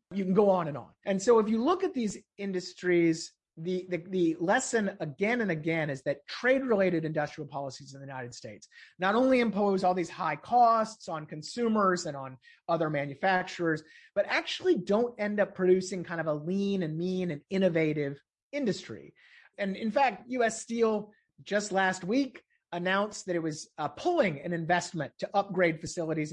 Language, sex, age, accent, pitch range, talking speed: English, male, 30-49, American, 160-210 Hz, 175 wpm